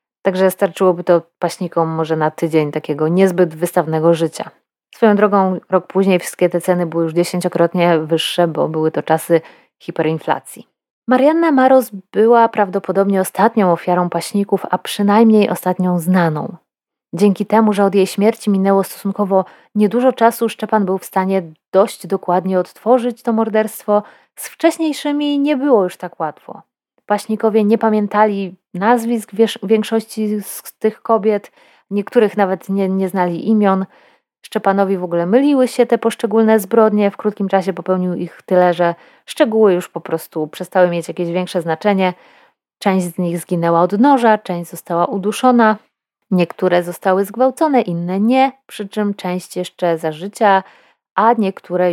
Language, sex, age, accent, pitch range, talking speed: Polish, female, 20-39, native, 175-220 Hz, 145 wpm